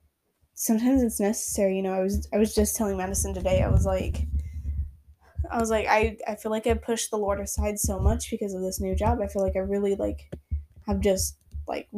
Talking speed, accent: 220 wpm, American